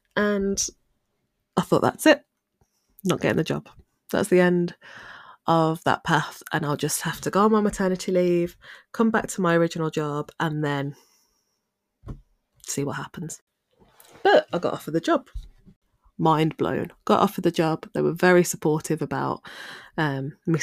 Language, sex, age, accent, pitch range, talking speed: English, female, 20-39, British, 160-210 Hz, 160 wpm